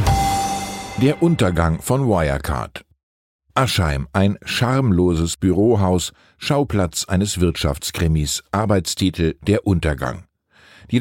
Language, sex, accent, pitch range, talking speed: German, male, German, 85-115 Hz, 80 wpm